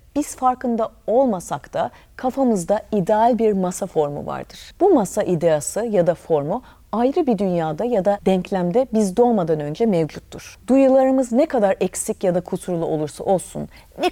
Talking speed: 155 wpm